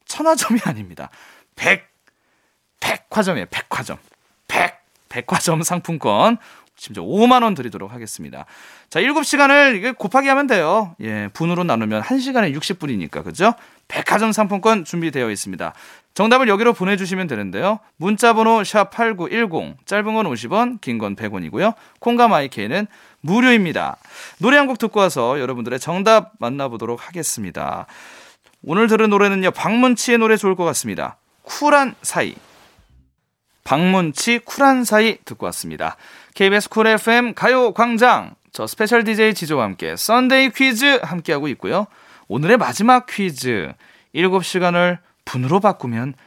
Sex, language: male, Korean